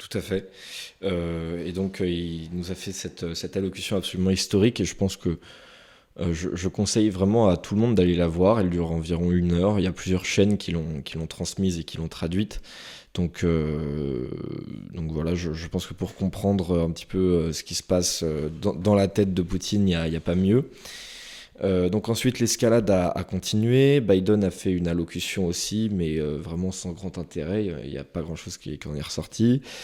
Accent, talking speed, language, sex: French, 215 wpm, French, male